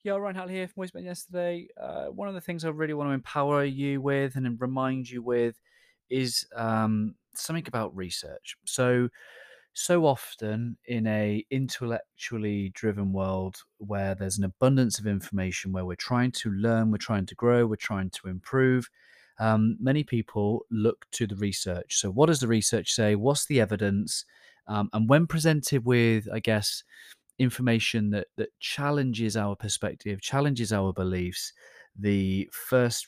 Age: 30-49